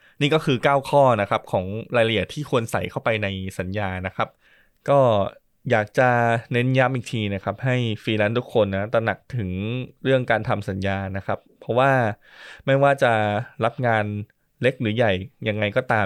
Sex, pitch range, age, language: male, 100-130 Hz, 20-39, Thai